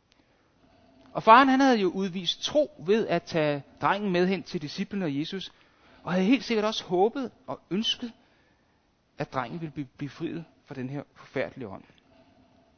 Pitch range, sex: 140-200 Hz, male